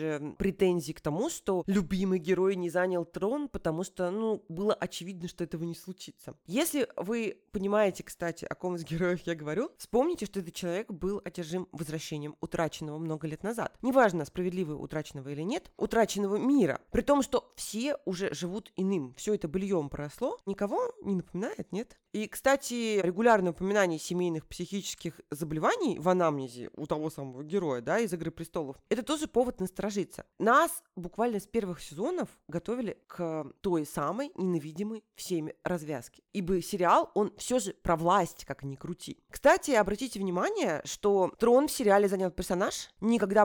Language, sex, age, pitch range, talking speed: Russian, female, 20-39, 170-210 Hz, 155 wpm